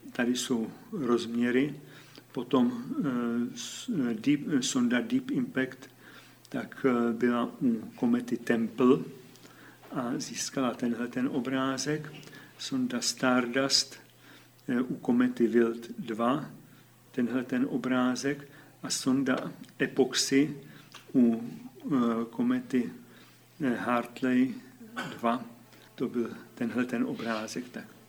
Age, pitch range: 50-69, 120-155 Hz